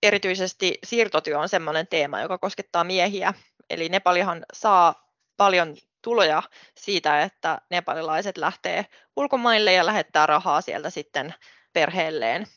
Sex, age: female, 20-39